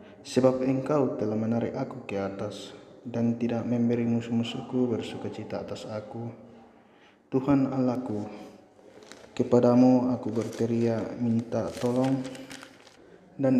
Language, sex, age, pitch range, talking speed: Indonesian, male, 20-39, 110-125 Hz, 95 wpm